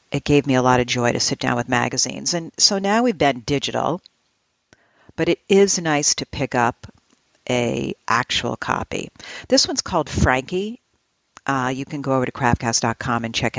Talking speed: 180 wpm